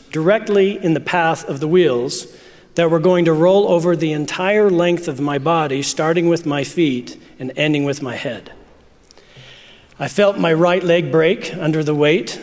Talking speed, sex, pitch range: 180 wpm, male, 150-175 Hz